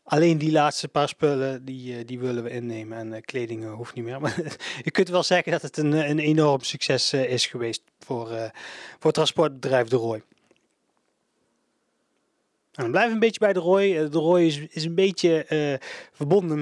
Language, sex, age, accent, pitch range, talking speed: Dutch, male, 30-49, Dutch, 130-160 Hz, 190 wpm